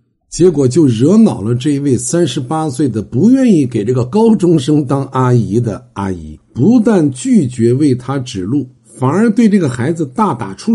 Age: 60-79